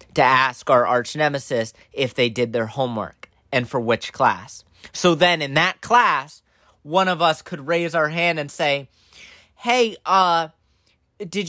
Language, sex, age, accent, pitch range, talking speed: English, male, 30-49, American, 130-200 Hz, 160 wpm